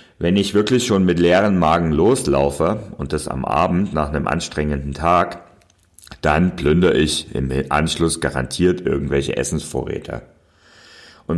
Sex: male